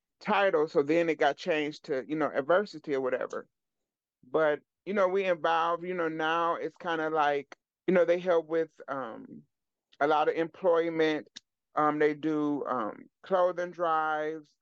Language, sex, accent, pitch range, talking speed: English, male, American, 150-170 Hz, 165 wpm